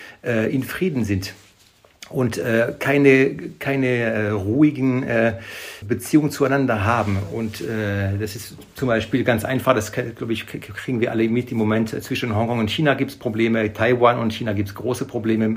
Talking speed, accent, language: 145 wpm, German, German